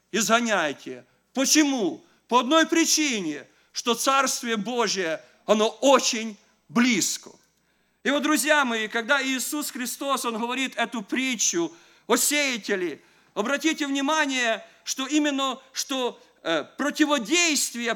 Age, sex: 50-69, male